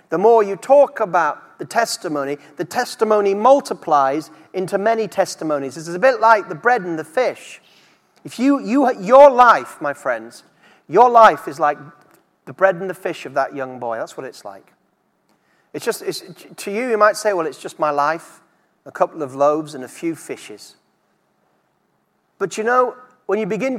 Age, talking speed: 40-59, 185 wpm